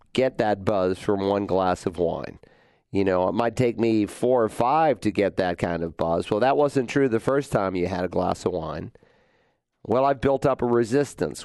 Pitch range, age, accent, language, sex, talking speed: 105-130 Hz, 40-59, American, English, male, 220 wpm